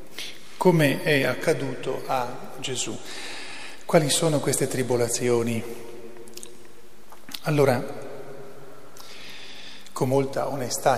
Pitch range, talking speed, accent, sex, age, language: 125-140 Hz, 70 wpm, native, male, 40-59, Italian